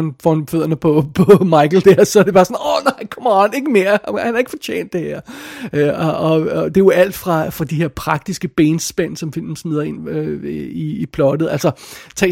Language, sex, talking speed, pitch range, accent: Danish, male, 230 wpm, 145-175 Hz, native